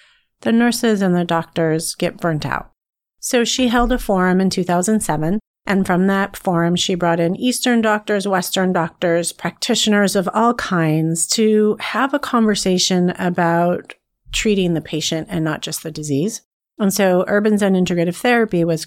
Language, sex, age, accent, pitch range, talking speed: English, female, 30-49, American, 170-205 Hz, 160 wpm